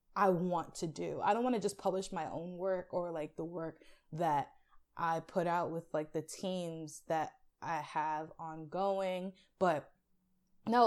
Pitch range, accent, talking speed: 165-200 Hz, American, 170 wpm